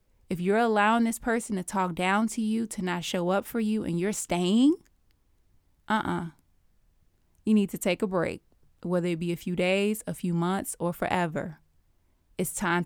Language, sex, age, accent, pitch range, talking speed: English, female, 20-39, American, 155-195 Hz, 185 wpm